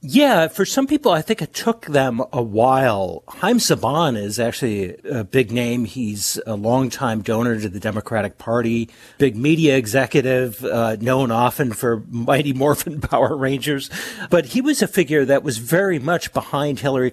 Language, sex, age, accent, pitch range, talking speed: English, male, 50-69, American, 115-150 Hz, 170 wpm